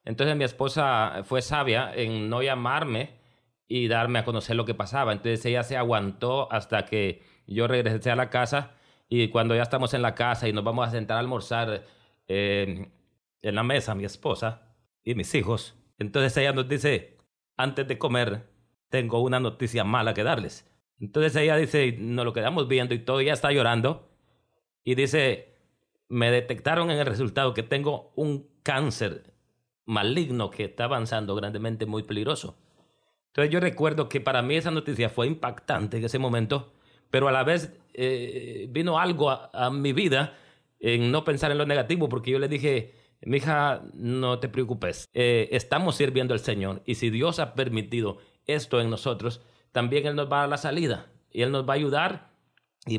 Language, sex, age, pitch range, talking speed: English, male, 30-49, 115-140 Hz, 180 wpm